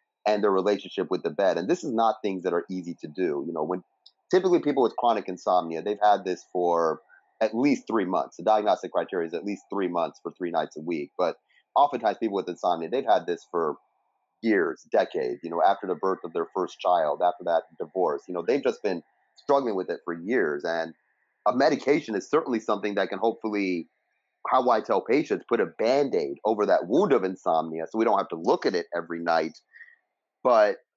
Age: 30-49